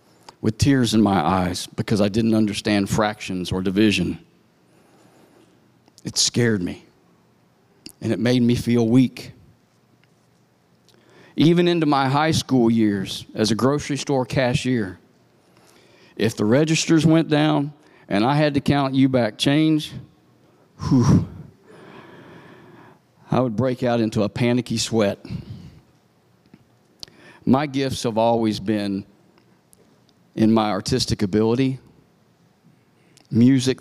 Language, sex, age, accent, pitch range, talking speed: English, male, 50-69, American, 110-135 Hz, 110 wpm